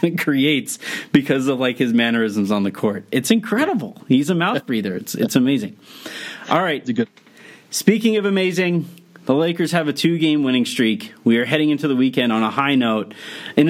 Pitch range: 115-150 Hz